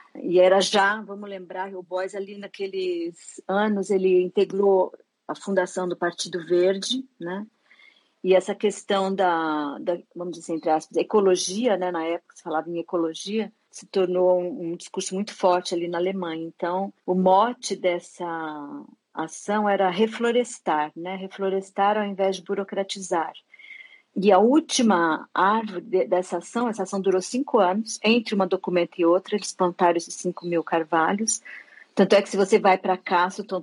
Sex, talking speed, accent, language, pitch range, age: female, 160 wpm, Brazilian, Portuguese, 175-210 Hz, 40-59